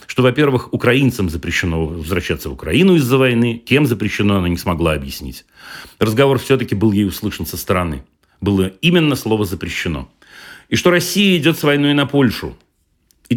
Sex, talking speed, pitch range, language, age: male, 155 wpm, 95-130 Hz, Russian, 40-59